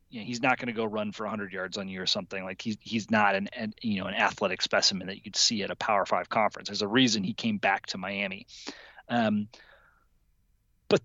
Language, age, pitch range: English, 30-49, 110-145 Hz